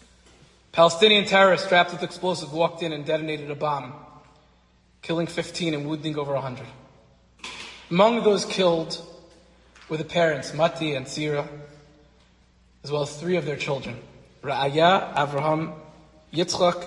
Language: English